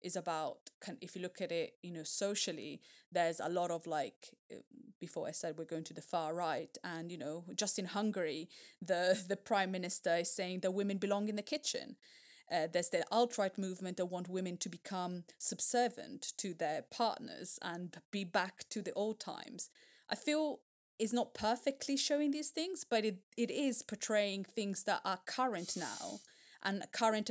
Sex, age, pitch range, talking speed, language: female, 20-39, 180-245 Hz, 185 wpm, English